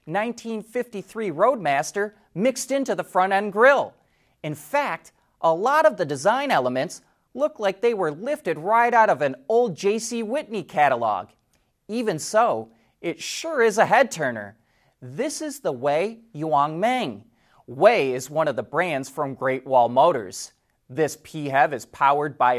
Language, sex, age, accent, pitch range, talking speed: English, male, 30-49, American, 135-220 Hz, 150 wpm